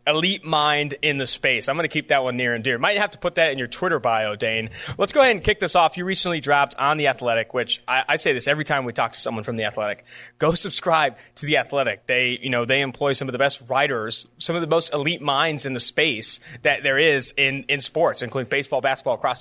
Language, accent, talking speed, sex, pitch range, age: English, American, 265 wpm, male, 125-155 Hz, 30-49